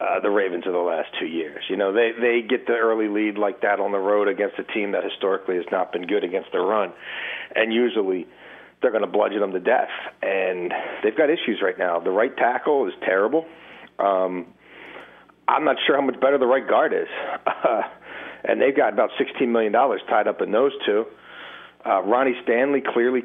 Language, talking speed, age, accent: English, 205 wpm, 40-59, American